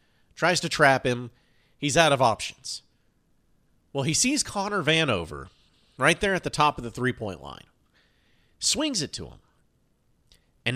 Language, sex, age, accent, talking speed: English, male, 40-59, American, 155 wpm